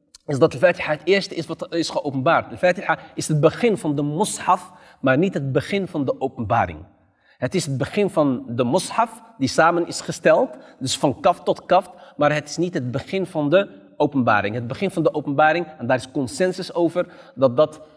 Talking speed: 205 wpm